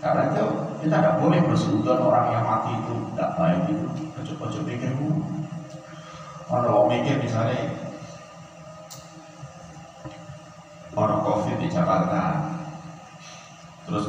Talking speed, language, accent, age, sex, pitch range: 100 wpm, Indonesian, native, 40-59, male, 145-160 Hz